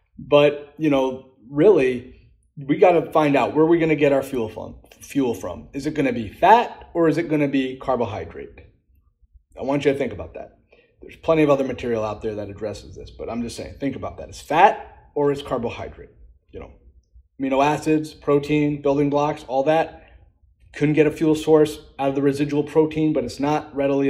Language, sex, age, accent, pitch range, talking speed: English, male, 30-49, American, 120-145 Hz, 200 wpm